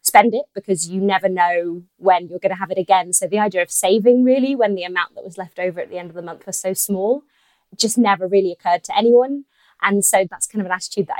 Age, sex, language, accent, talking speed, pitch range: 20-39, female, English, British, 265 wpm, 185-230 Hz